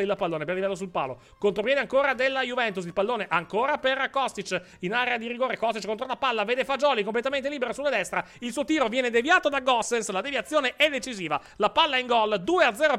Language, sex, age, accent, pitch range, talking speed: Italian, male, 30-49, native, 195-255 Hz, 210 wpm